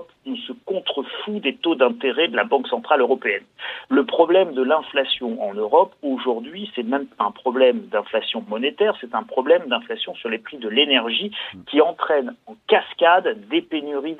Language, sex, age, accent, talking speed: French, male, 50-69, French, 165 wpm